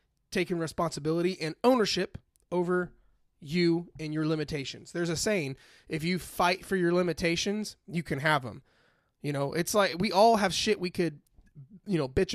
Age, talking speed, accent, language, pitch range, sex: 30-49, 170 wpm, American, English, 160-205 Hz, male